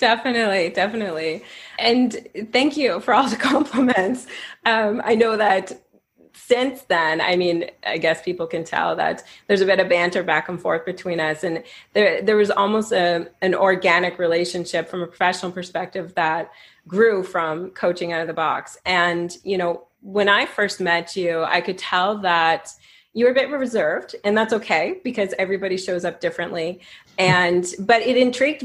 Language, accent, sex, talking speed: English, American, female, 170 wpm